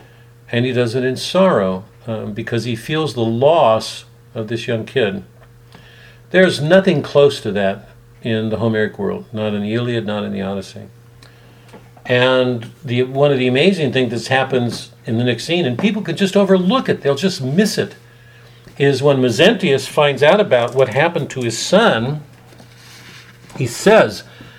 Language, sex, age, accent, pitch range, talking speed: English, male, 60-79, American, 115-130 Hz, 170 wpm